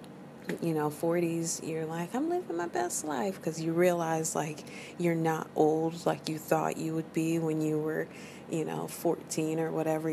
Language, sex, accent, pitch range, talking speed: English, female, American, 155-170 Hz, 185 wpm